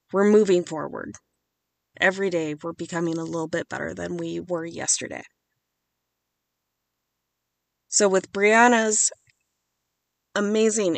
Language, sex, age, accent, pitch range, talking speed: English, female, 20-39, American, 160-220 Hz, 105 wpm